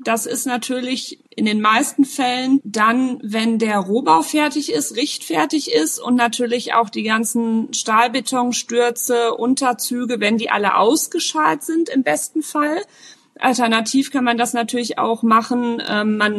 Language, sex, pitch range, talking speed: German, female, 220-270 Hz, 145 wpm